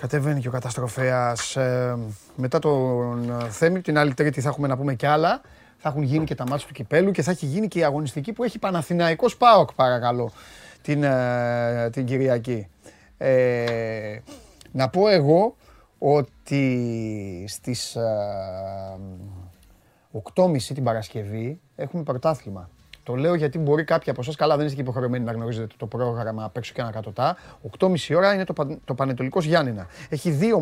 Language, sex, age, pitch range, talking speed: Greek, male, 30-49, 120-165 Hz, 155 wpm